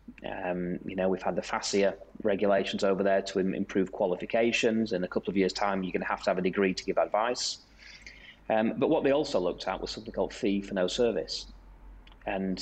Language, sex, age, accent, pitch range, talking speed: English, male, 30-49, British, 95-105 Hz, 210 wpm